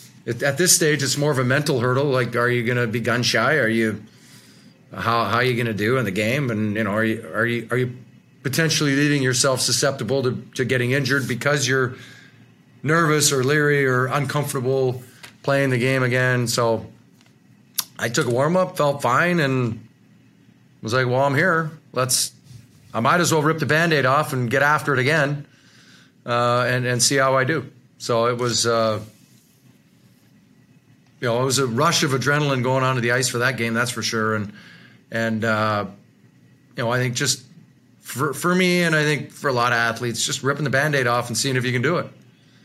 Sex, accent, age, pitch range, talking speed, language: male, American, 40-59, 120-140 Hz, 200 wpm, English